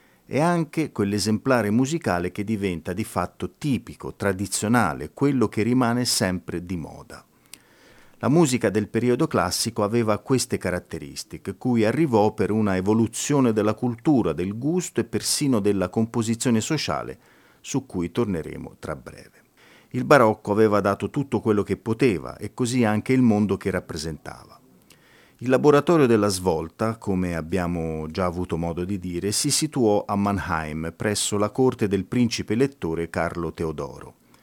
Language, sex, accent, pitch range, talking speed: Italian, male, native, 90-125 Hz, 140 wpm